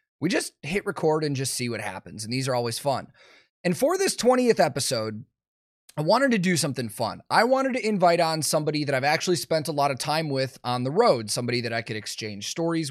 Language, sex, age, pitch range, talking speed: English, male, 30-49, 130-185 Hz, 230 wpm